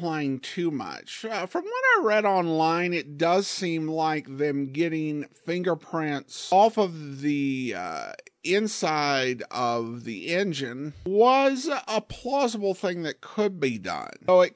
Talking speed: 135 wpm